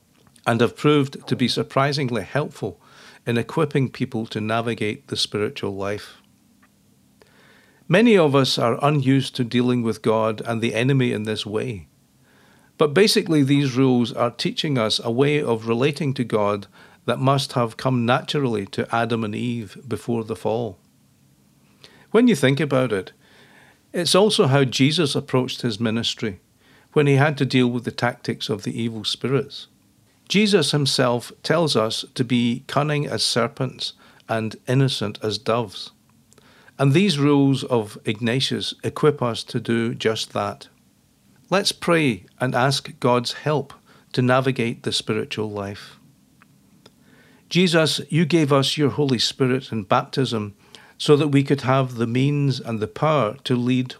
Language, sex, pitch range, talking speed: English, male, 115-140 Hz, 150 wpm